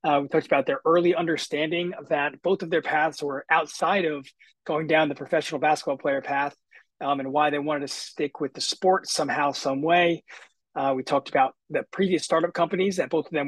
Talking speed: 215 wpm